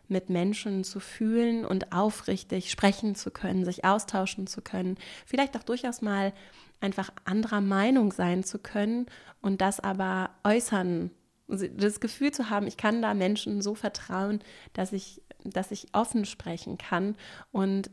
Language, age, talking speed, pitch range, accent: German, 30-49, 150 wpm, 185-220 Hz, German